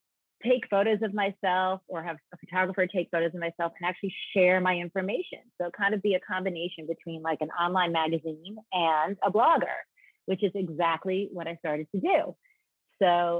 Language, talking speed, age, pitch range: English, 180 wpm, 30-49, 165-195 Hz